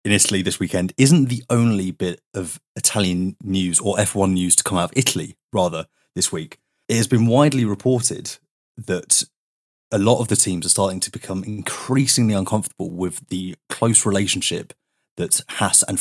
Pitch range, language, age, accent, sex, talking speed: 90-120 Hz, English, 30-49, British, male, 170 wpm